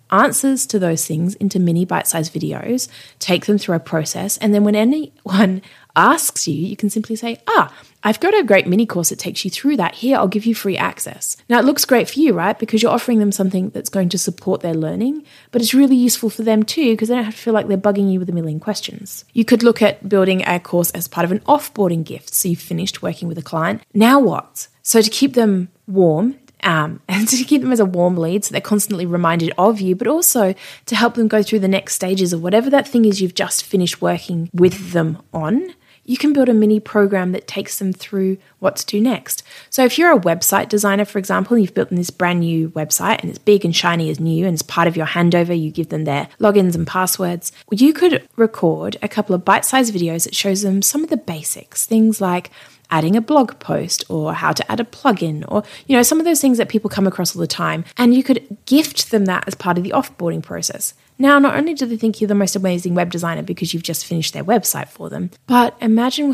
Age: 20-39